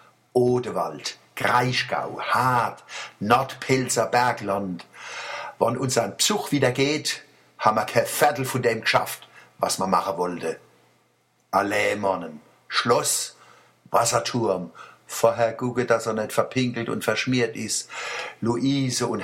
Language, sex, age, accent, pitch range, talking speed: German, male, 60-79, German, 110-130 Hz, 110 wpm